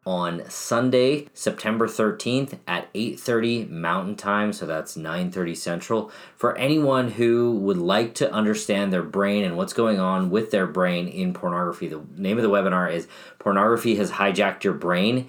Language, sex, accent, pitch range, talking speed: English, male, American, 95-120 Hz, 170 wpm